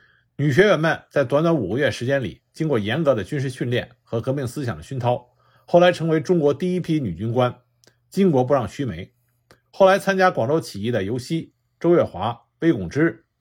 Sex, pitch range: male, 120-165 Hz